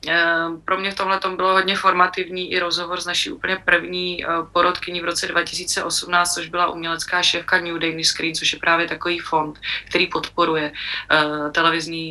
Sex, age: female, 20-39